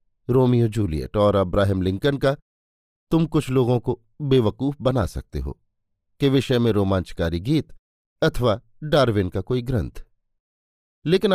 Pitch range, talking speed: 105-150 Hz, 130 wpm